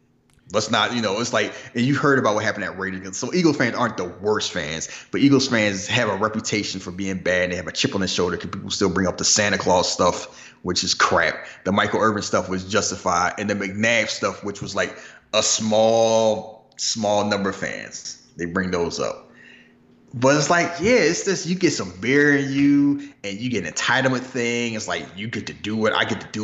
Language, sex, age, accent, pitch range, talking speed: English, male, 30-49, American, 100-140 Hz, 230 wpm